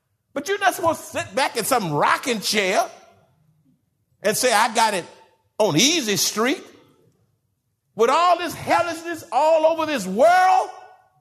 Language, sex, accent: English, male, American